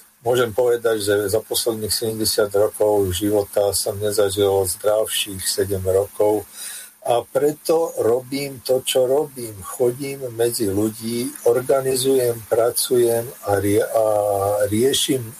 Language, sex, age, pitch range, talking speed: Slovak, male, 50-69, 105-120 Hz, 100 wpm